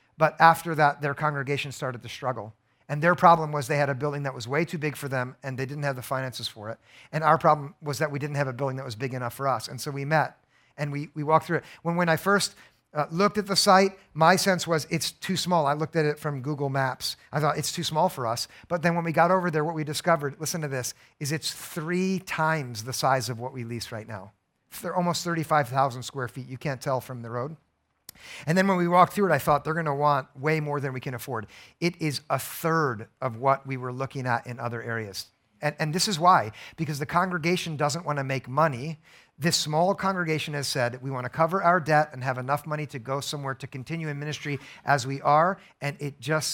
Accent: American